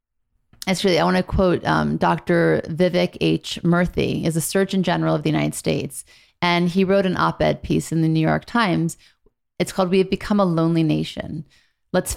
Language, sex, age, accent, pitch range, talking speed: English, female, 30-49, American, 165-195 Hz, 185 wpm